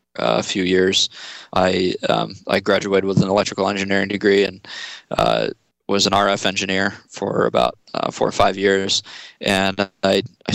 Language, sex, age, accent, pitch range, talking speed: English, male, 20-39, American, 95-100 Hz, 165 wpm